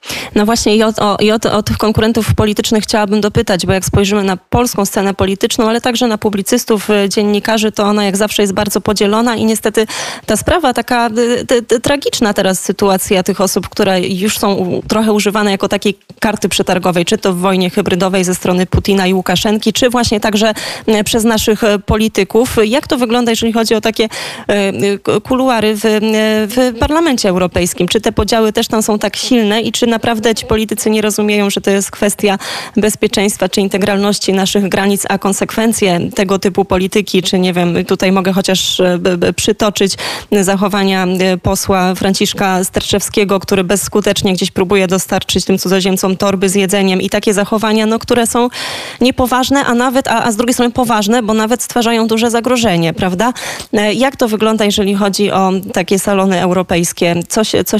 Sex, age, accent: female, 20-39, native